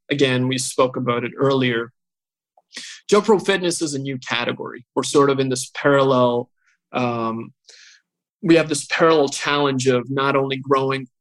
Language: English